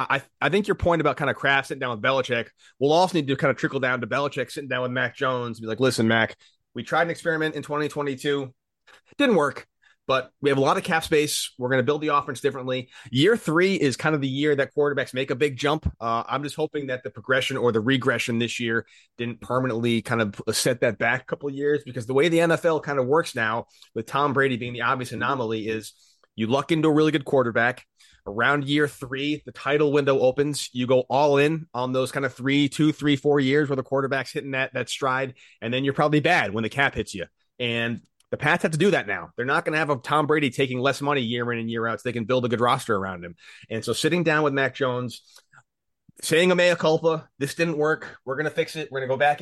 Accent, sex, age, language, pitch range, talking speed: American, male, 30-49, English, 125-150 Hz, 255 wpm